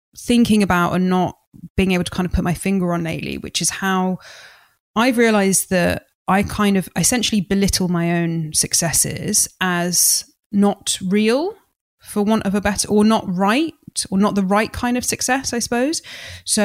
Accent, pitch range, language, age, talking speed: British, 175-210 Hz, English, 20-39, 175 wpm